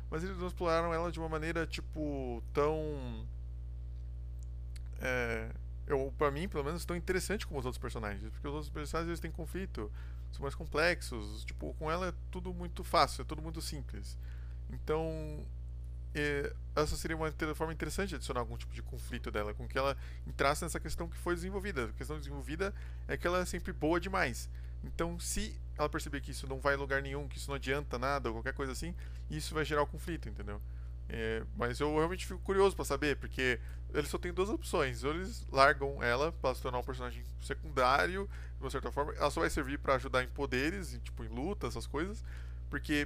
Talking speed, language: 200 wpm, Portuguese